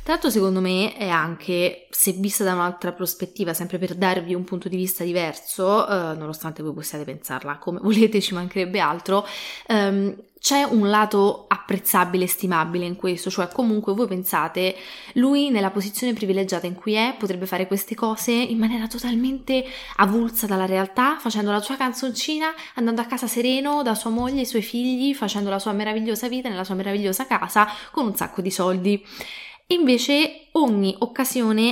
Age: 20-39